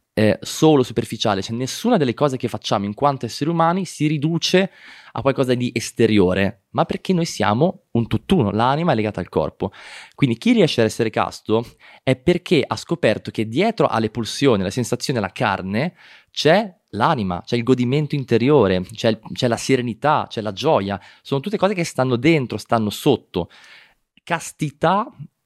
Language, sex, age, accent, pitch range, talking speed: Italian, male, 20-39, native, 105-150 Hz, 165 wpm